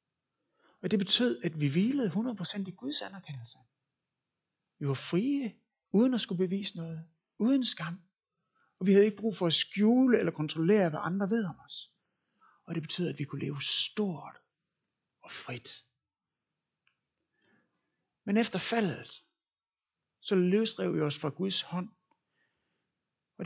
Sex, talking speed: male, 145 wpm